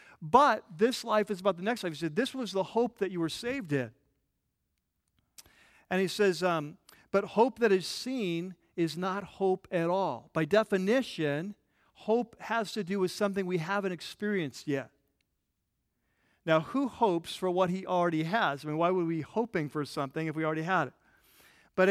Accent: American